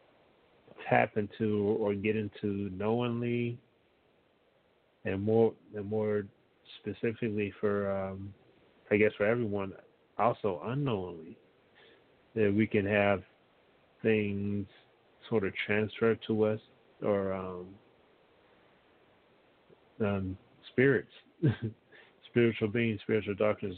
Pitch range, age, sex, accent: 95-110 Hz, 40-59, male, American